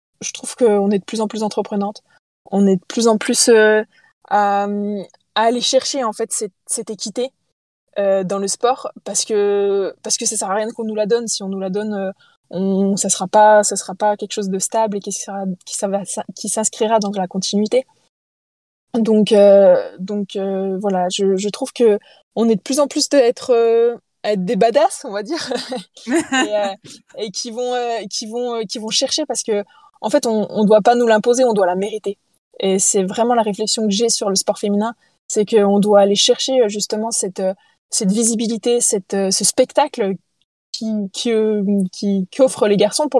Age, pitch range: 20-39, 195-235 Hz